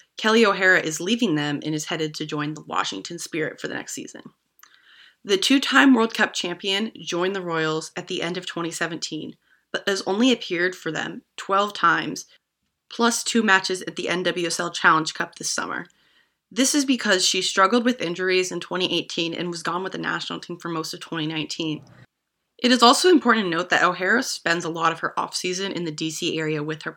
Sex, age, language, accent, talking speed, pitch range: female, 20-39, English, American, 195 wpm, 160-195 Hz